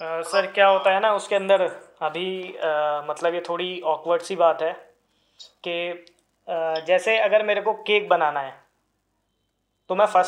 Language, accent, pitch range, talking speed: Hindi, native, 170-205 Hz, 170 wpm